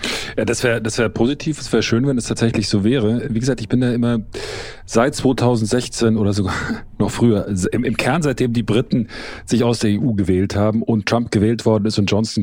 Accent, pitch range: German, 105-120 Hz